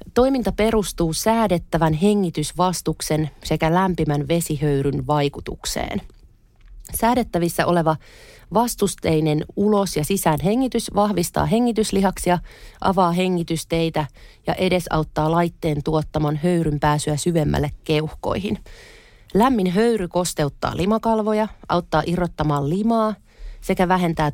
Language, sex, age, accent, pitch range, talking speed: Finnish, female, 30-49, native, 155-195 Hz, 85 wpm